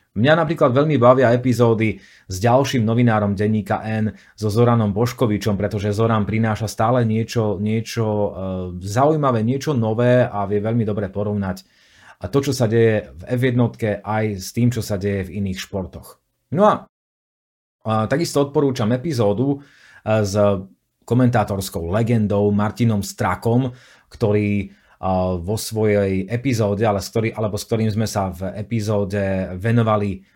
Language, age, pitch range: Slovak, 30-49, 100-120 Hz